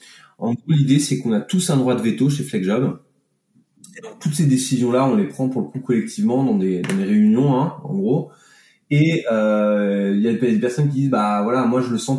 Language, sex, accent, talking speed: French, male, French, 225 wpm